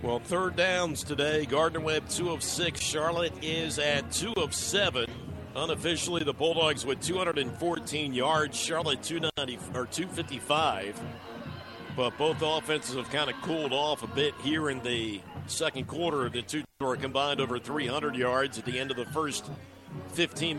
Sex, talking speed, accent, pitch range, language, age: male, 155 wpm, American, 140-175 Hz, English, 50-69